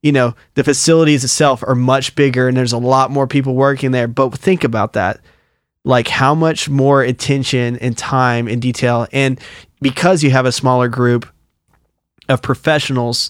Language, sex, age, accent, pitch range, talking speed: English, male, 20-39, American, 120-145 Hz, 170 wpm